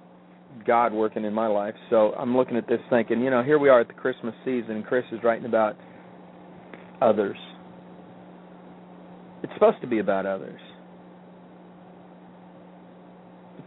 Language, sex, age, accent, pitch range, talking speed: English, male, 50-69, American, 110-180 Hz, 145 wpm